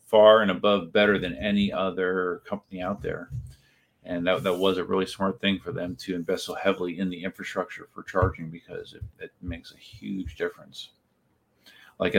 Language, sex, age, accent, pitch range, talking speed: English, male, 40-59, American, 90-105 Hz, 180 wpm